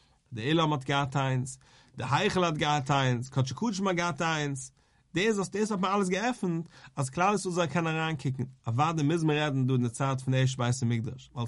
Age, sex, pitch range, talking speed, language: 40-59, male, 130-170 Hz, 140 wpm, English